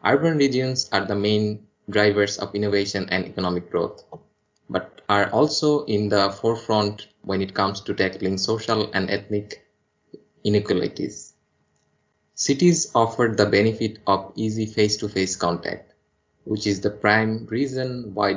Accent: Indian